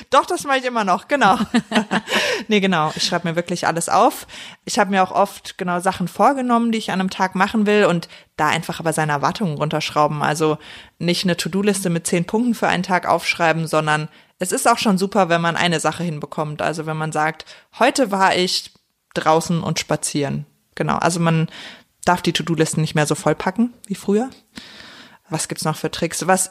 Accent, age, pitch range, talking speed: German, 20-39, 160-200 Hz, 200 wpm